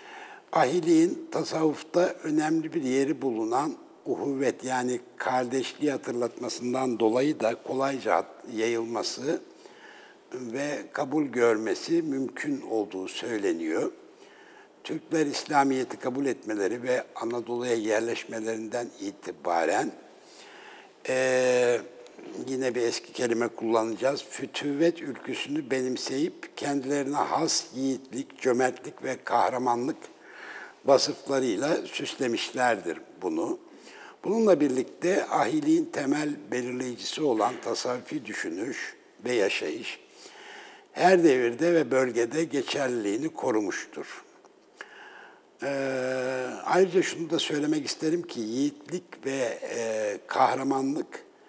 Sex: male